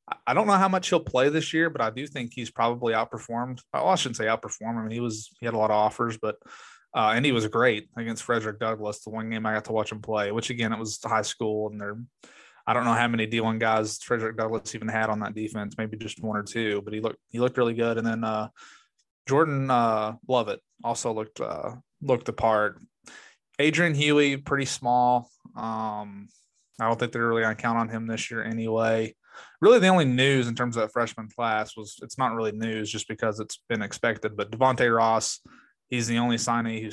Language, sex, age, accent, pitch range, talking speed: English, male, 20-39, American, 110-125 Hz, 230 wpm